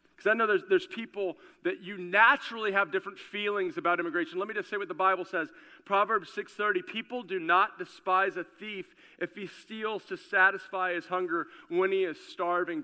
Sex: male